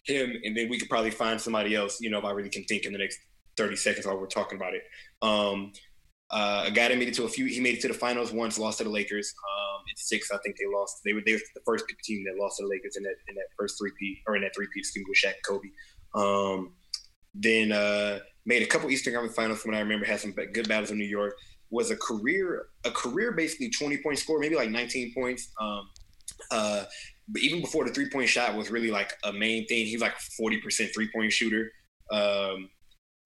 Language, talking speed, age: English, 245 wpm, 20-39